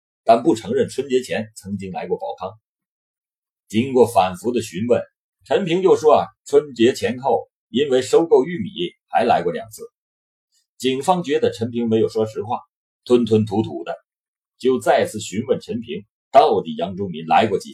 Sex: male